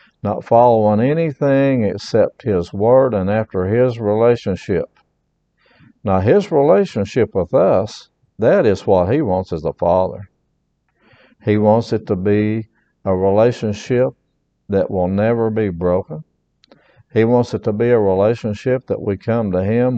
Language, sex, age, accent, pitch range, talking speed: English, male, 60-79, American, 100-120 Hz, 140 wpm